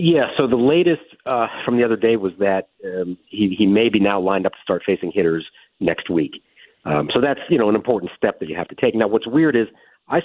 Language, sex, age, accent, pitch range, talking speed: English, male, 40-59, American, 95-130 Hz, 250 wpm